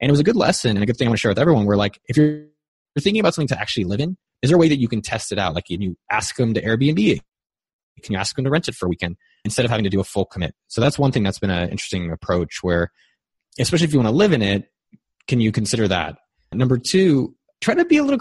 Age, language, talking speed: 20-39, English, 300 wpm